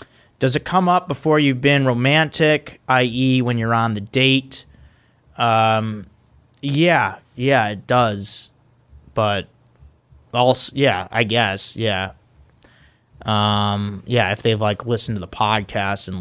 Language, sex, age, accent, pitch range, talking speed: English, male, 30-49, American, 105-130 Hz, 130 wpm